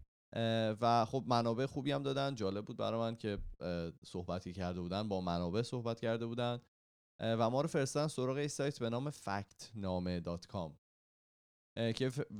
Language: Persian